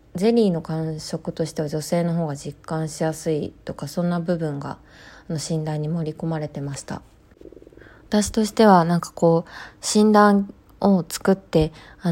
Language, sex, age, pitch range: Japanese, female, 20-39, 155-185 Hz